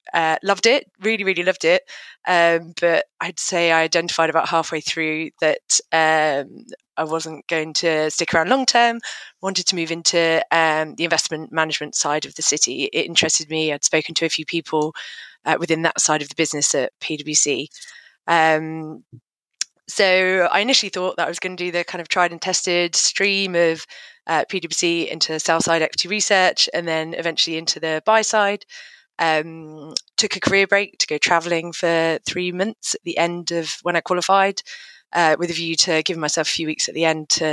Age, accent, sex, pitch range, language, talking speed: 20-39, British, female, 160-185 Hz, English, 195 wpm